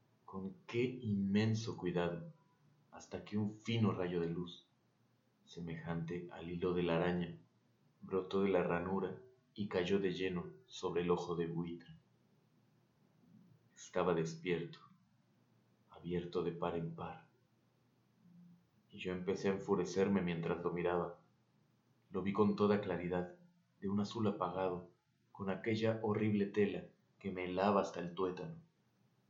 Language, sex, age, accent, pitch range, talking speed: Spanish, male, 30-49, Mexican, 90-120 Hz, 130 wpm